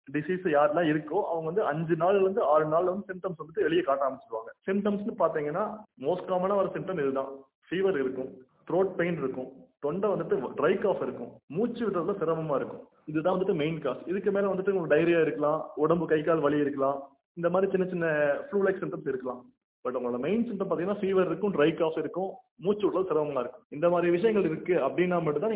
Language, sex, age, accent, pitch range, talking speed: Tamil, male, 30-49, native, 150-190 Hz, 190 wpm